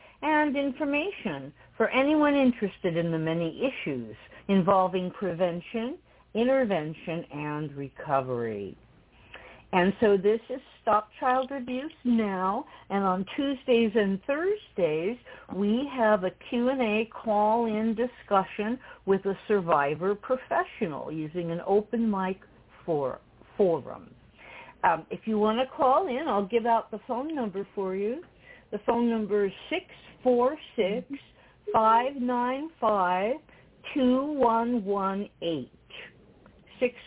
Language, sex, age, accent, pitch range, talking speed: English, female, 60-79, American, 195-255 Hz, 115 wpm